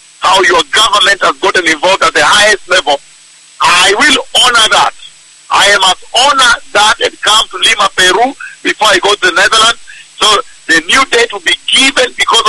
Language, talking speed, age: English, 185 wpm, 50-69